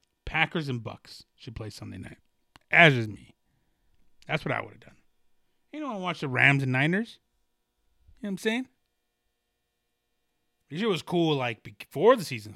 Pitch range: 115-180 Hz